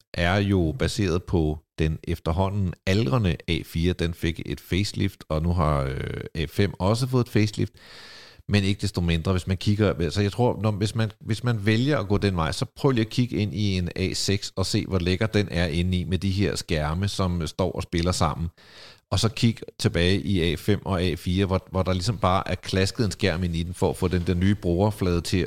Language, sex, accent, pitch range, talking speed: Danish, male, native, 90-110 Hz, 225 wpm